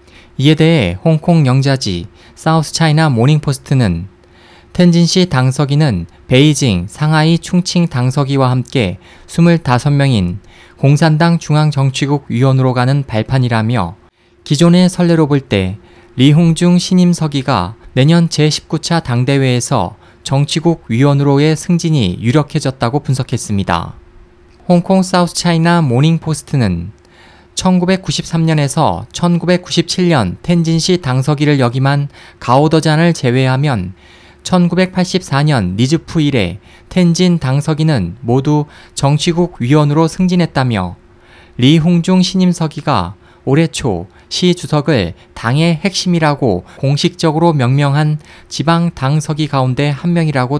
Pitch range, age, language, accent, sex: 120-165 Hz, 20-39, Korean, native, male